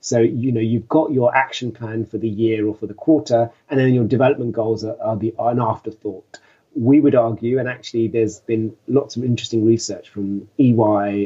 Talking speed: 210 wpm